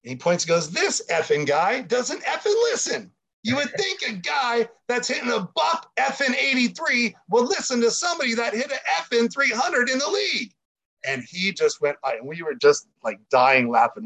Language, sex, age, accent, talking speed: English, male, 40-59, American, 190 wpm